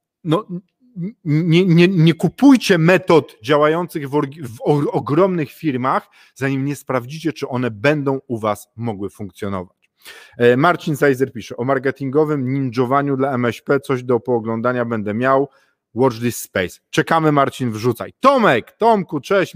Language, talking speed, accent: Polish, 135 wpm, native